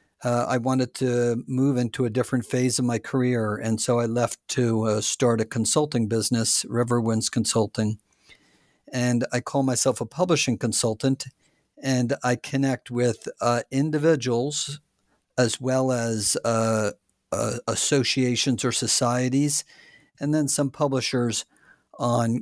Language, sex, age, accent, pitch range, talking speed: English, male, 50-69, American, 115-130 Hz, 135 wpm